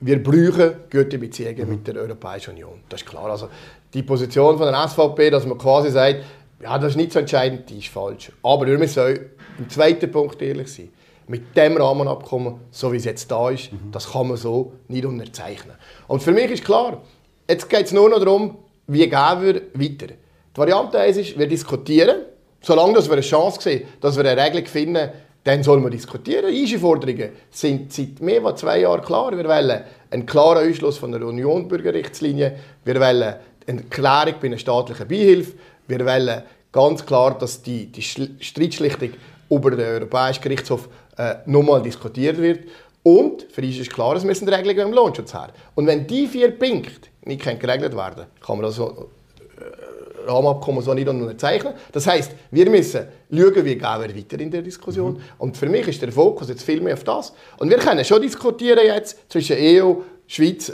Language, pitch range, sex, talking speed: German, 130-175 Hz, male, 185 wpm